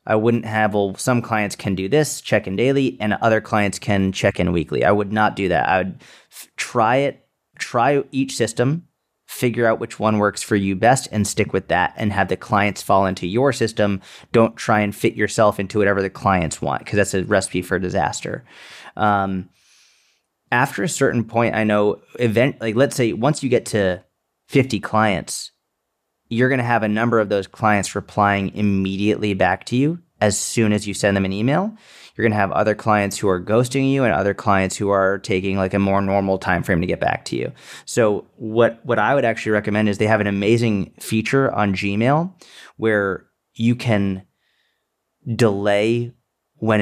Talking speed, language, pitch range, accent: 195 wpm, English, 100-115 Hz, American